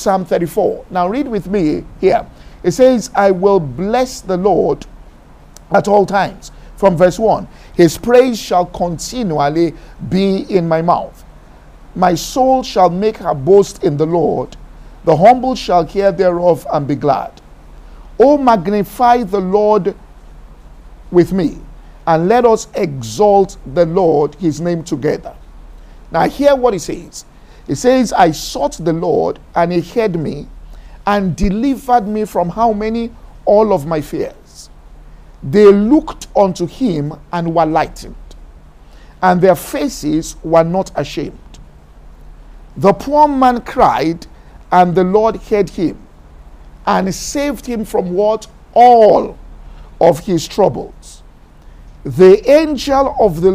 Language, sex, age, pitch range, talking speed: English, male, 50-69, 165-220 Hz, 135 wpm